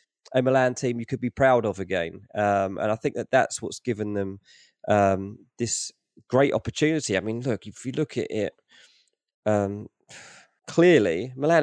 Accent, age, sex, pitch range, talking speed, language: British, 20-39, male, 100-120 Hz, 170 wpm, English